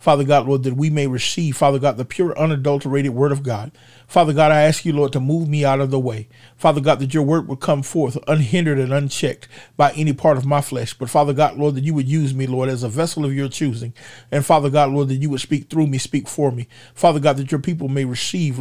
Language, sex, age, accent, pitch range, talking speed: English, male, 40-59, American, 130-150 Hz, 260 wpm